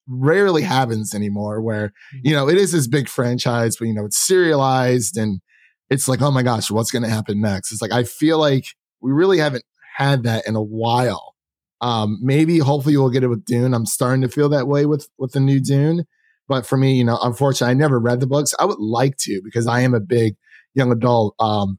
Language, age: English, 30-49